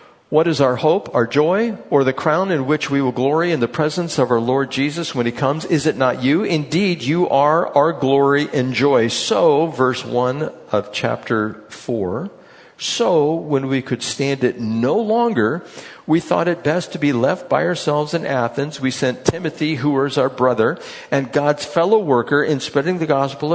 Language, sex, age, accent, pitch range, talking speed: English, male, 50-69, American, 125-170 Hz, 190 wpm